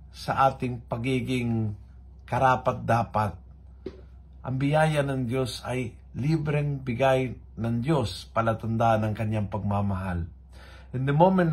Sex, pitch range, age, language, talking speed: male, 90-140 Hz, 50-69, Filipino, 110 wpm